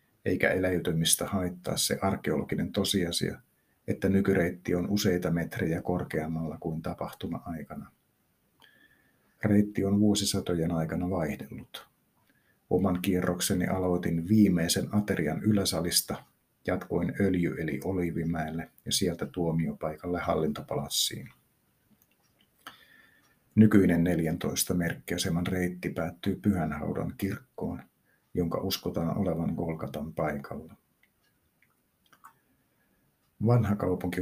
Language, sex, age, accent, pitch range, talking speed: Finnish, male, 50-69, native, 85-100 Hz, 80 wpm